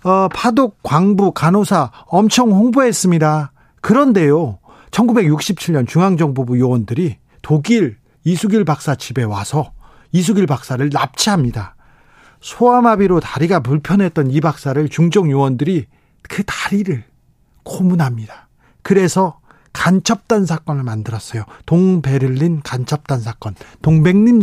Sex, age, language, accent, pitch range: male, 40-59, Korean, native, 130-190 Hz